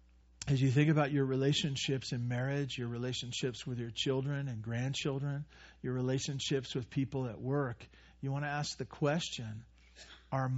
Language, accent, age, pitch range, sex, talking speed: English, American, 50-69, 105-145 Hz, male, 160 wpm